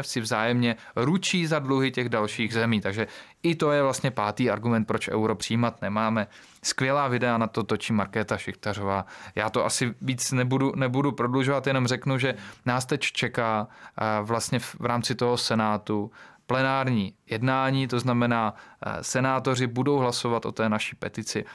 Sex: male